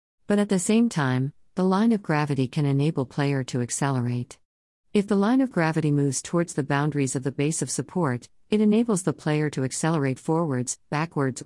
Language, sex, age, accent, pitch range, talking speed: English, female, 50-69, American, 135-160 Hz, 190 wpm